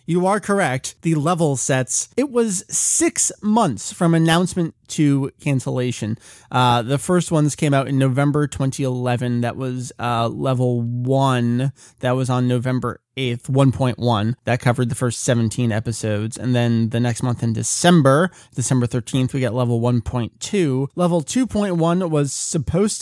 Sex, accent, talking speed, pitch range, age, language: male, American, 150 wpm, 130-195 Hz, 30-49, English